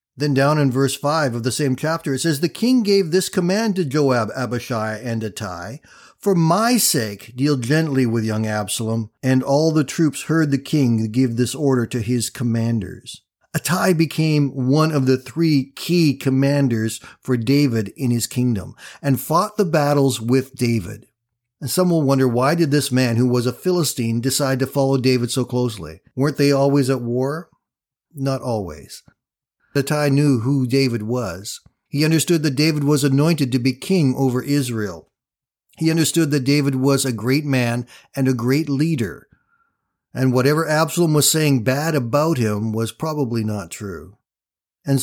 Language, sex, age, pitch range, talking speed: English, male, 50-69, 120-150 Hz, 170 wpm